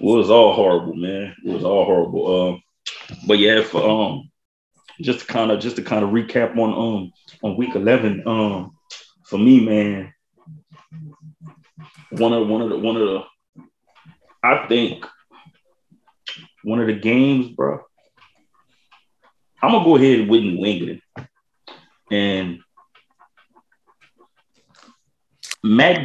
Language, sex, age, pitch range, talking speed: English, male, 30-49, 105-155 Hz, 125 wpm